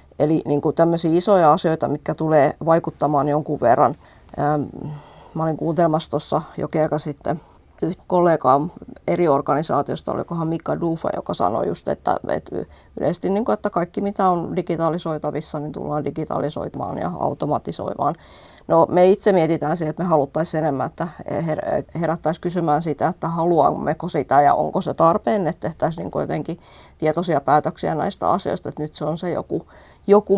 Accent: native